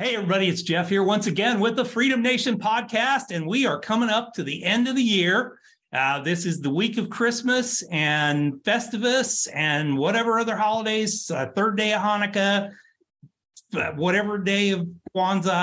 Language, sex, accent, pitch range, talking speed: English, male, American, 145-205 Hz, 175 wpm